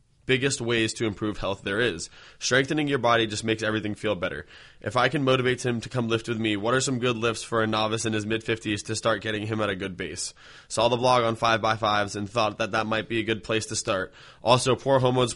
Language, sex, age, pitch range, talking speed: English, male, 20-39, 110-120 Hz, 250 wpm